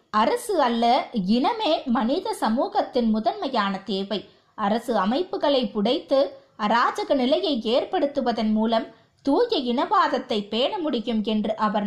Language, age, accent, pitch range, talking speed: Tamil, 20-39, native, 215-285 Hz, 100 wpm